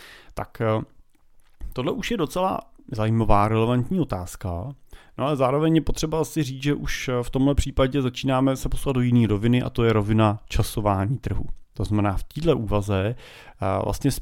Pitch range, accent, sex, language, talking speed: 105-125 Hz, native, male, Czech, 160 wpm